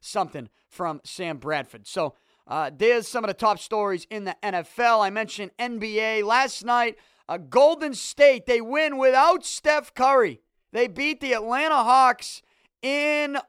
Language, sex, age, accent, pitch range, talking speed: English, male, 30-49, American, 185-245 Hz, 150 wpm